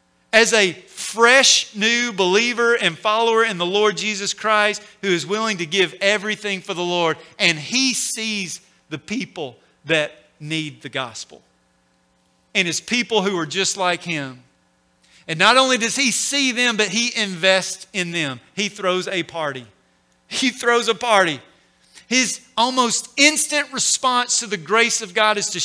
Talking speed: 160 wpm